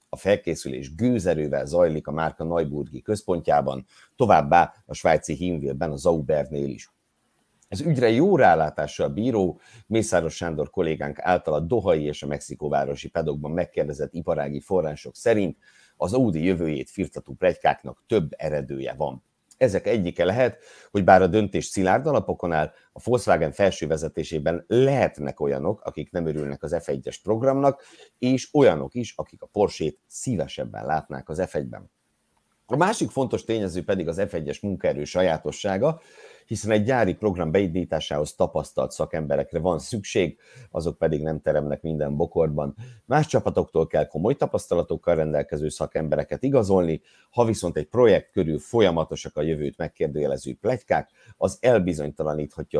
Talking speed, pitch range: 135 wpm, 75-105 Hz